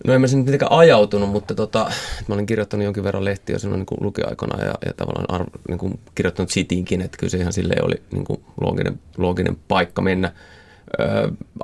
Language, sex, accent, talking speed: Finnish, male, native, 175 wpm